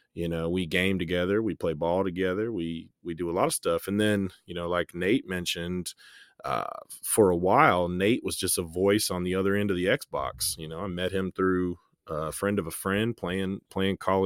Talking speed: 225 wpm